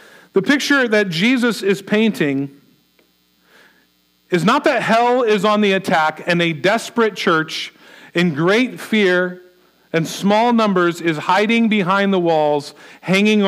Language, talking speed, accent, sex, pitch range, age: English, 135 wpm, American, male, 160-220 Hz, 40-59